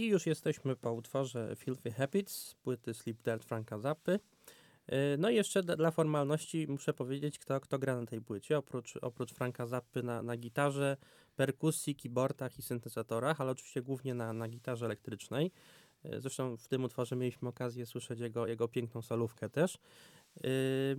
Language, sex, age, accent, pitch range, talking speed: Polish, male, 20-39, native, 120-145 Hz, 160 wpm